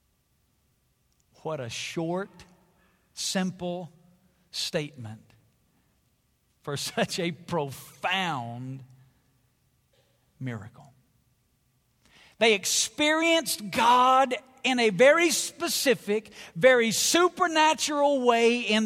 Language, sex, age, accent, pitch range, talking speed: English, male, 50-69, American, 125-175 Hz, 65 wpm